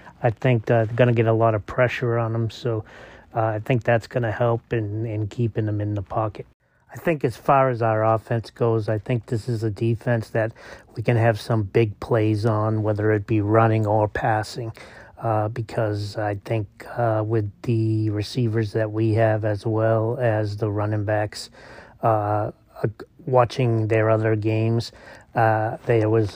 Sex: male